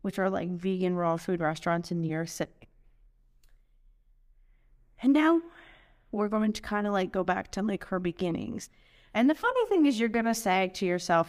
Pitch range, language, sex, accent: 175-225 Hz, English, female, American